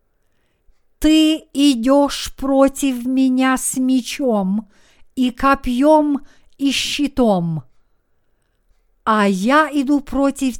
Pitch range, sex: 200-270 Hz, female